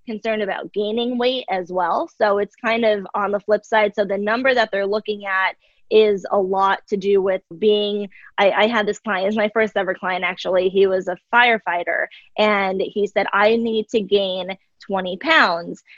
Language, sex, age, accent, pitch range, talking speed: English, female, 20-39, American, 195-235 Hz, 200 wpm